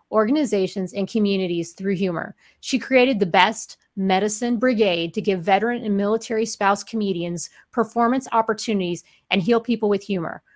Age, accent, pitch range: 40-59, American, 195-245 Hz